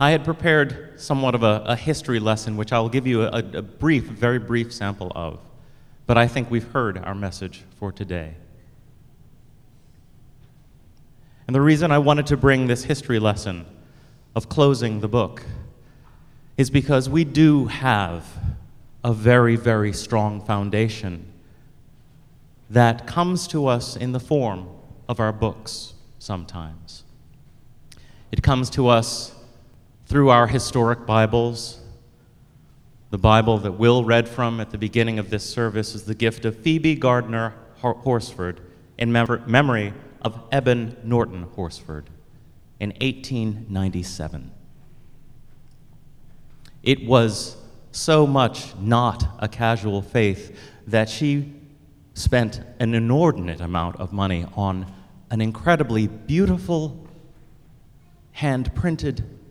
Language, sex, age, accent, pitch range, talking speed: English, male, 30-49, American, 105-130 Hz, 120 wpm